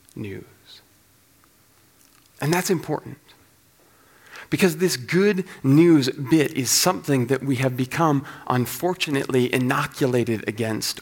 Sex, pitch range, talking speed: male, 130-165 Hz, 100 wpm